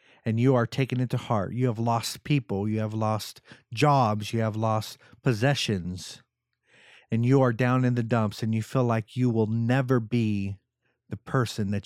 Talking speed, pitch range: 180 wpm, 110-130 Hz